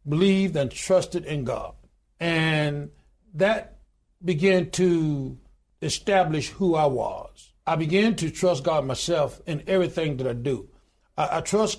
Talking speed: 135 wpm